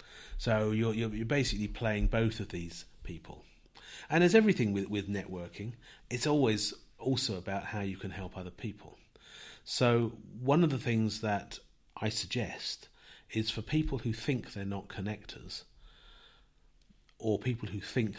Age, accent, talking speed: 40-59, British, 150 wpm